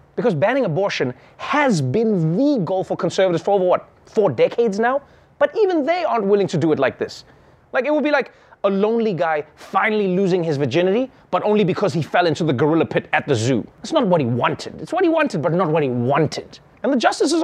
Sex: male